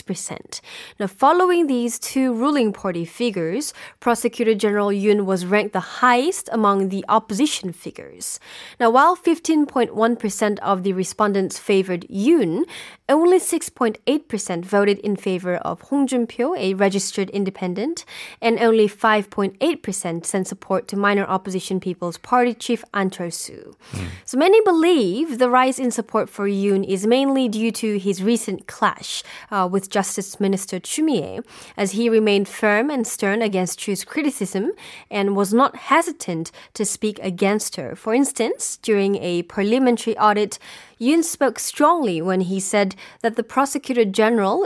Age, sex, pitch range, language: 20-39, female, 195-250 Hz, Korean